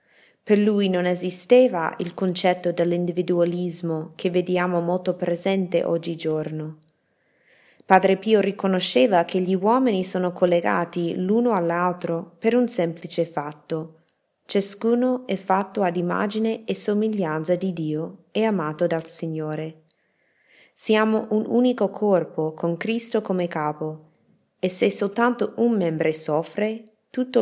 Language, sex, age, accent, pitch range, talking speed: Italian, female, 20-39, native, 165-205 Hz, 120 wpm